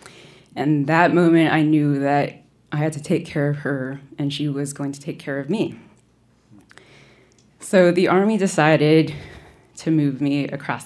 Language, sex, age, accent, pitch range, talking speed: English, female, 20-39, American, 140-165 Hz, 165 wpm